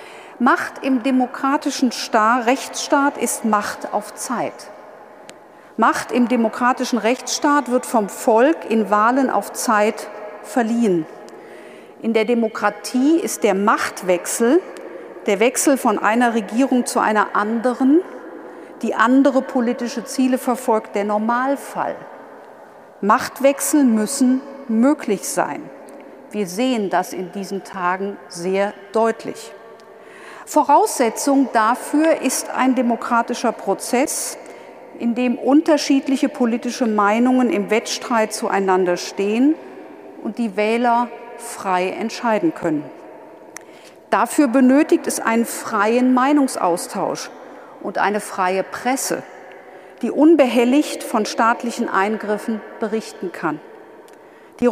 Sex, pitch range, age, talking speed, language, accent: female, 215-275 Hz, 50-69, 100 wpm, German, German